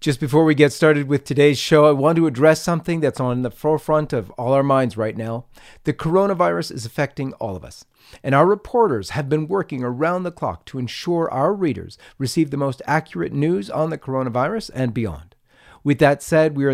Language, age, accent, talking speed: English, 40-59, American, 210 wpm